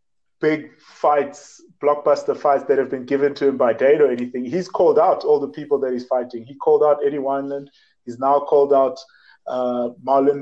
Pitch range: 135-155 Hz